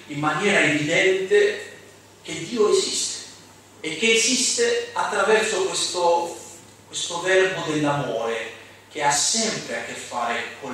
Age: 30-49